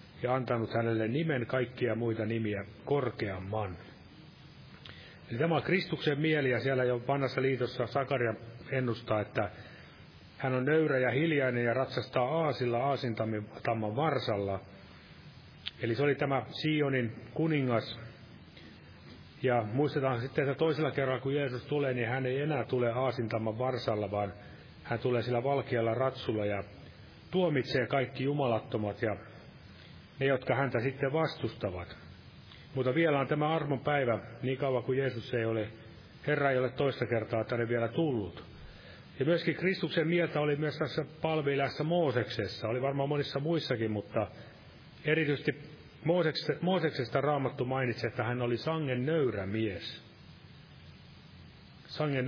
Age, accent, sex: 30-49, native, male